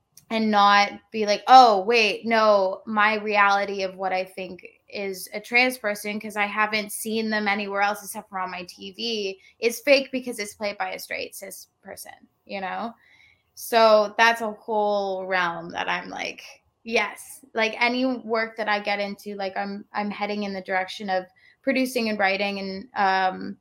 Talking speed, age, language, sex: 180 wpm, 20-39, English, female